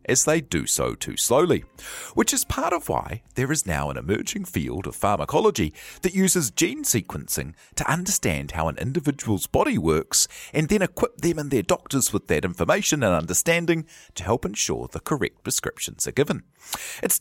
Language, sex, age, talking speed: English, male, 40-59, 180 wpm